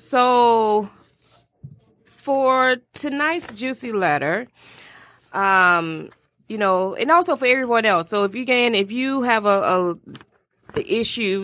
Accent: American